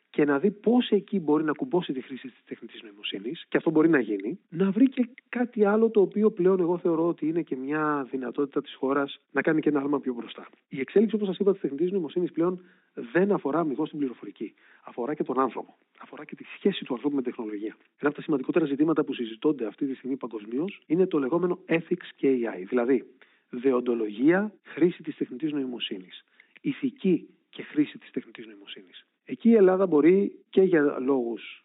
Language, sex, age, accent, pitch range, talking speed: Greek, male, 40-59, native, 135-185 Hz, 200 wpm